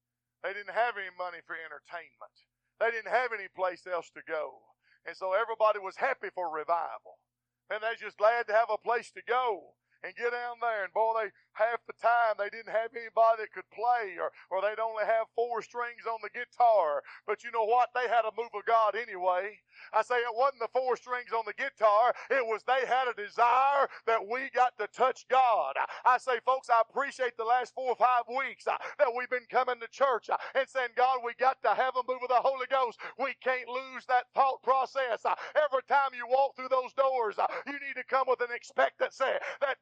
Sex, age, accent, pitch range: male, 40-59, American, 175-260 Hz